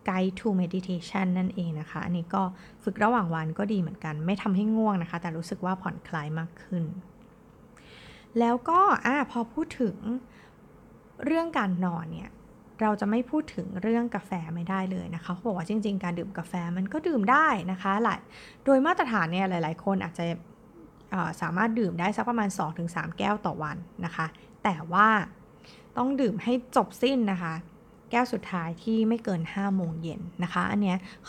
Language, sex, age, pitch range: Thai, female, 20-39, 175-225 Hz